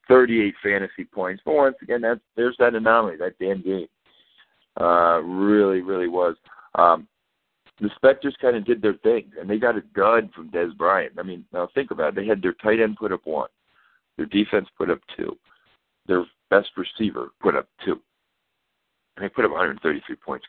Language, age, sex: English, 60-79, male